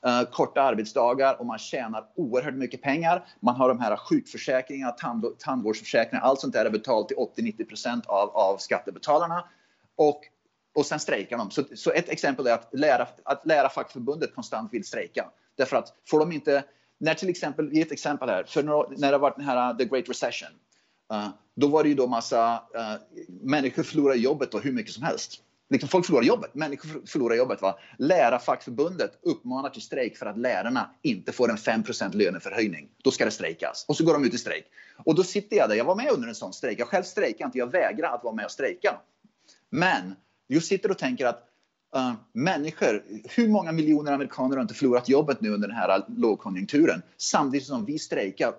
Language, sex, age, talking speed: Swedish, male, 30-49, 200 wpm